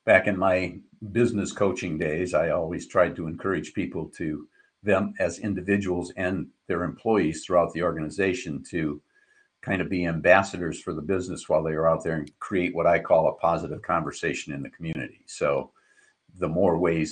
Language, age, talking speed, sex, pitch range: English, 50-69, 175 wpm, male, 80-90 Hz